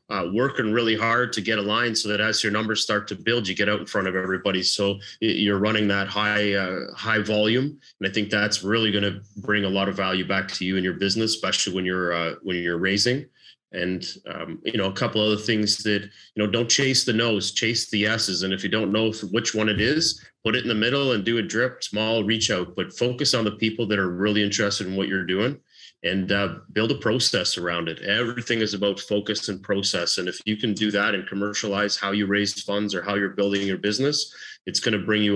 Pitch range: 100-110 Hz